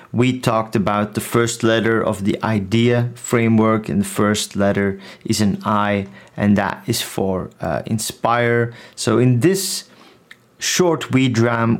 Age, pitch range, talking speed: 30-49, 110-125 Hz, 145 wpm